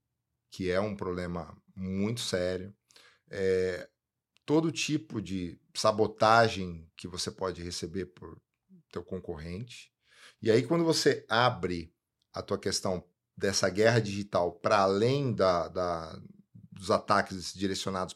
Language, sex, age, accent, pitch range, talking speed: Portuguese, male, 40-59, Brazilian, 95-120 Hz, 110 wpm